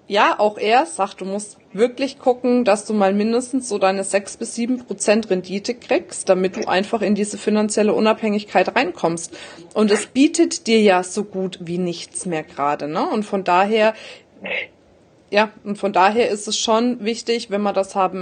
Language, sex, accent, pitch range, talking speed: German, female, German, 190-220 Hz, 180 wpm